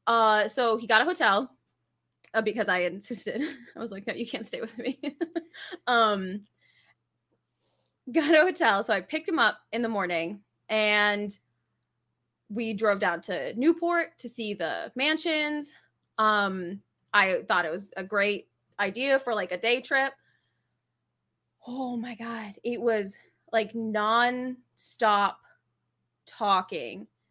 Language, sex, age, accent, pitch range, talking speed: English, female, 20-39, American, 205-285 Hz, 135 wpm